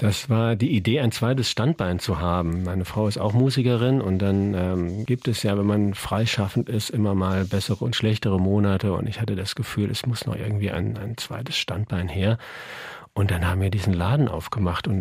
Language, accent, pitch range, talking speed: German, German, 100-125 Hz, 210 wpm